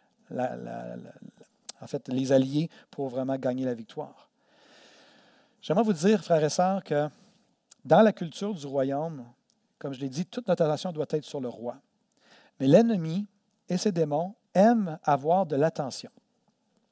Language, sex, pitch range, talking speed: French, male, 145-205 Hz, 165 wpm